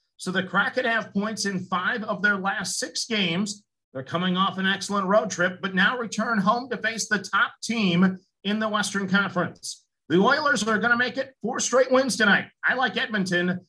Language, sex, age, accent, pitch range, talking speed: English, male, 50-69, American, 190-230 Hz, 195 wpm